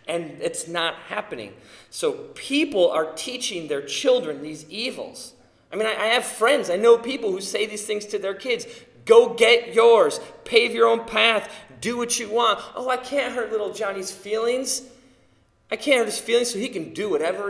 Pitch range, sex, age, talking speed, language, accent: 150-245 Hz, male, 30-49, 190 wpm, English, American